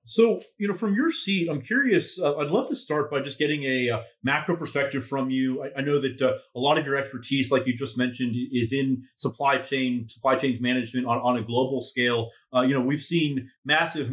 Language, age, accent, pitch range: English, 30-49, American, 125-160 Hz